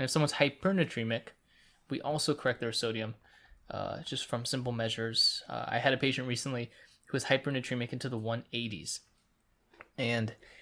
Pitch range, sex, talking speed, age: 115-135 Hz, male, 155 wpm, 20-39